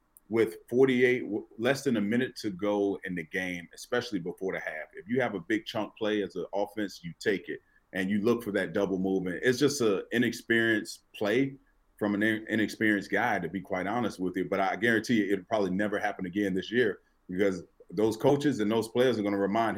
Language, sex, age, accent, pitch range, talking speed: English, male, 30-49, American, 100-130 Hz, 210 wpm